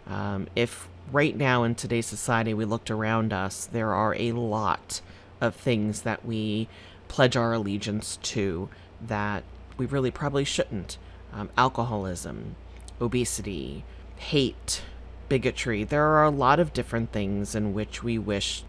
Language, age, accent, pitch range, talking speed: English, 30-49, American, 95-120 Hz, 140 wpm